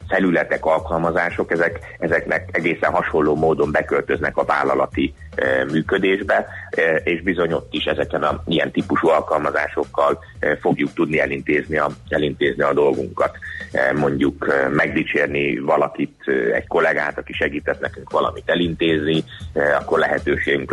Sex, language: male, Hungarian